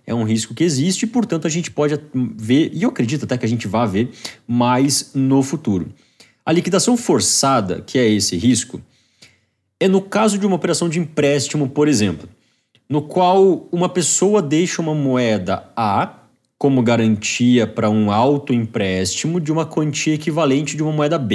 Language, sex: Portuguese, male